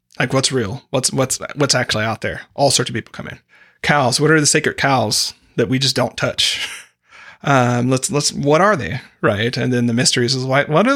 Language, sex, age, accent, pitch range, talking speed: English, male, 30-49, American, 120-150 Hz, 225 wpm